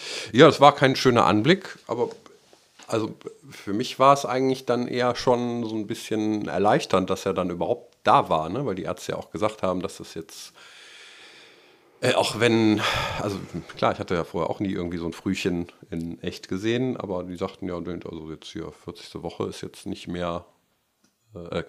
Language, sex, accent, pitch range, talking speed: German, male, German, 90-115 Hz, 190 wpm